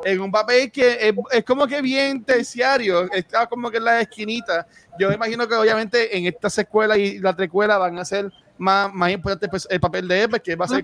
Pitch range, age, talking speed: 165-210 Hz, 30-49, 235 wpm